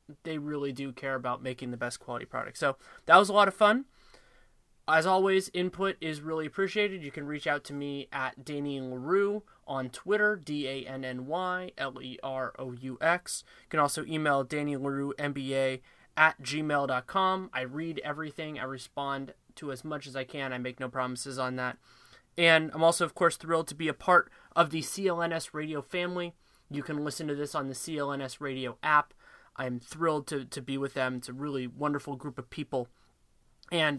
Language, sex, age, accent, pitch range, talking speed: English, male, 20-39, American, 135-170 Hz, 180 wpm